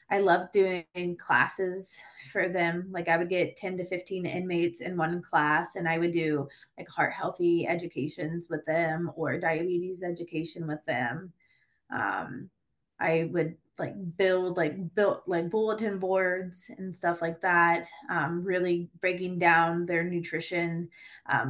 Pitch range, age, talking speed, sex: 170-195 Hz, 20-39, 150 wpm, female